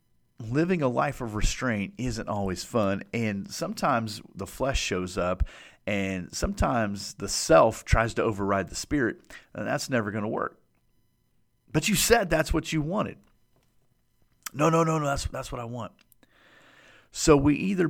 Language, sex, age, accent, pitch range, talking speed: English, male, 40-59, American, 95-130 Hz, 160 wpm